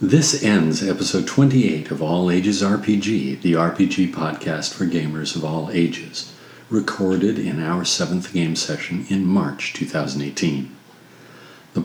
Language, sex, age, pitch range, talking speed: English, male, 50-69, 85-125 Hz, 130 wpm